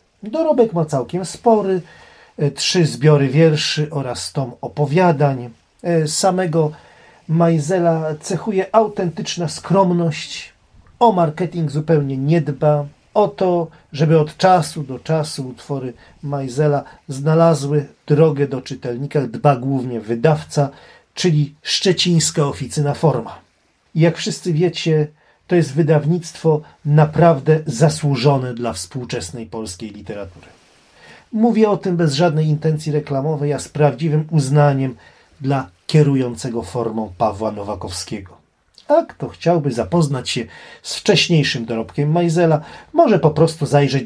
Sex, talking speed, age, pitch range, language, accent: male, 110 wpm, 40-59, 125-170 Hz, Polish, native